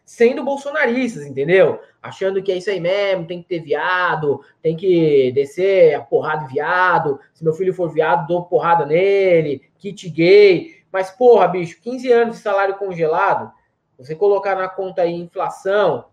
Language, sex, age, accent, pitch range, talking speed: Portuguese, male, 20-39, Brazilian, 145-210 Hz, 165 wpm